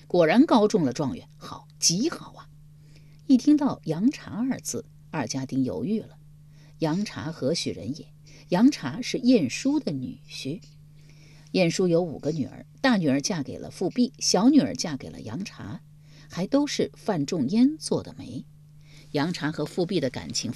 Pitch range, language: 150-210 Hz, Chinese